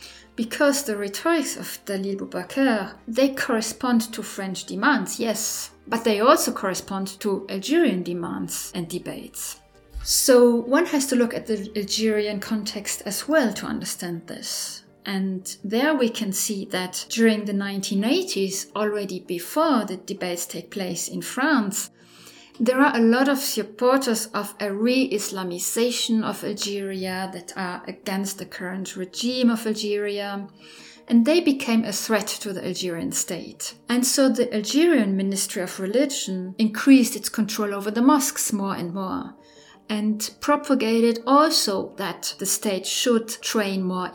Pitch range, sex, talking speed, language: 195-235 Hz, female, 145 wpm, English